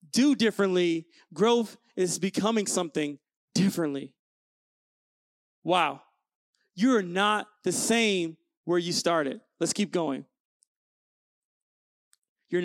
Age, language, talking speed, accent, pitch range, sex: 40-59, English, 95 wpm, American, 210-285 Hz, male